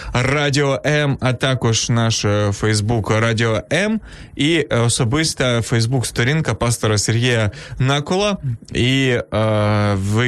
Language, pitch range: Ukrainian, 115-145 Hz